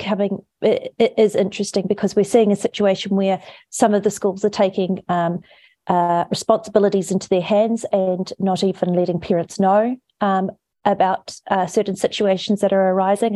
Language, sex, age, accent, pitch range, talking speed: English, female, 30-49, Australian, 175-205 Hz, 160 wpm